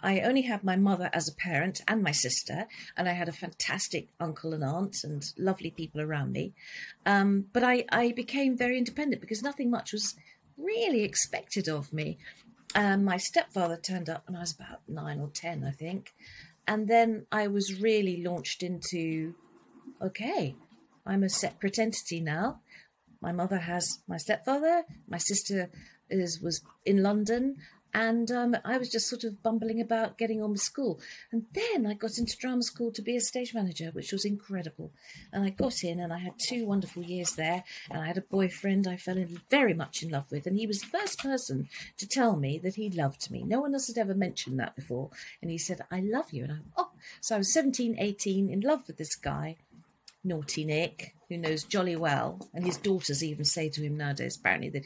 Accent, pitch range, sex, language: British, 170-230 Hz, female, English